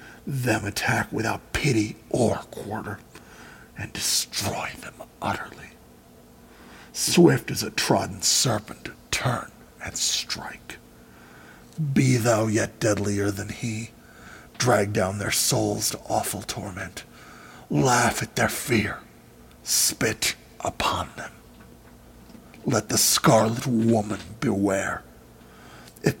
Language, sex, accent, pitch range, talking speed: English, male, American, 100-115 Hz, 100 wpm